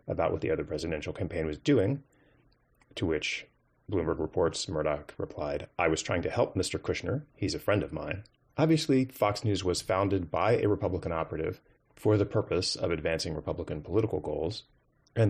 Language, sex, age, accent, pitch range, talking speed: English, male, 30-49, American, 85-115 Hz, 175 wpm